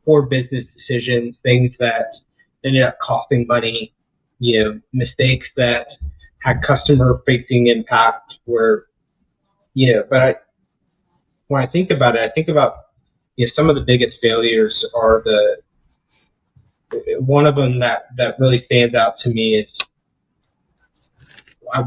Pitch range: 120-150 Hz